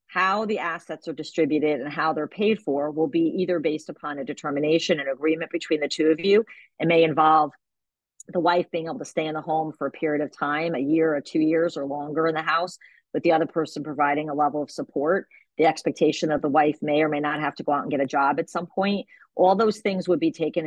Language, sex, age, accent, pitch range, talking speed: English, female, 40-59, American, 150-170 Hz, 240 wpm